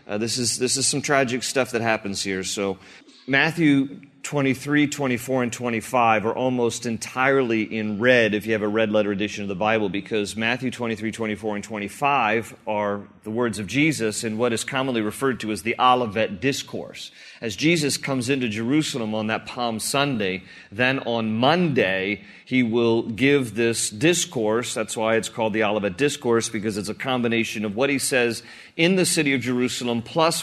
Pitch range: 110-135 Hz